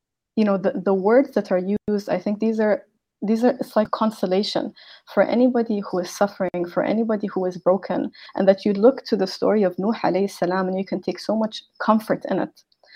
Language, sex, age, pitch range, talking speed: English, female, 20-39, 190-240 Hz, 220 wpm